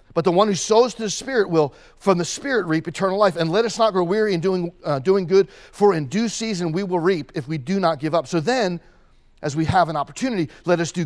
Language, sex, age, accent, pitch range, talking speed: English, male, 40-59, American, 140-185 Hz, 265 wpm